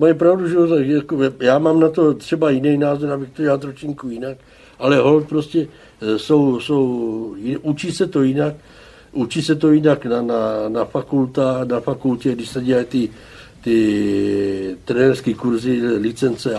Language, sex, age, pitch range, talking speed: Czech, male, 60-79, 120-145 Hz, 160 wpm